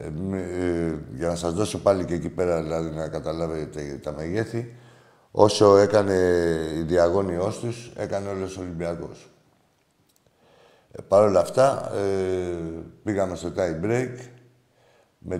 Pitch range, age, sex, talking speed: 85-115 Hz, 60-79, male, 130 wpm